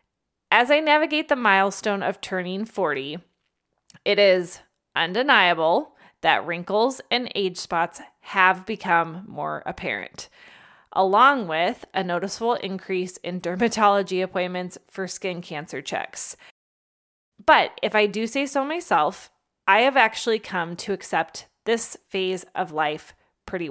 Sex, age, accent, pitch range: female, 20-39, American, 180-220 Hz